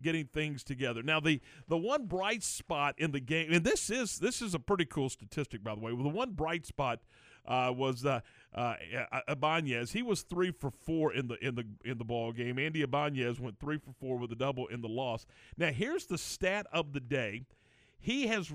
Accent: American